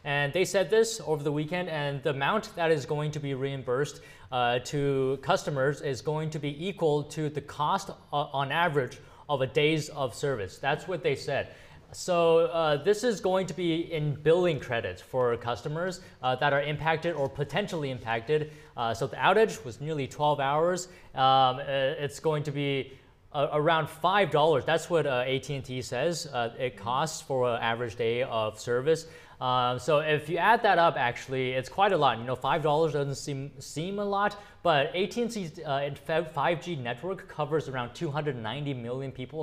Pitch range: 130-170 Hz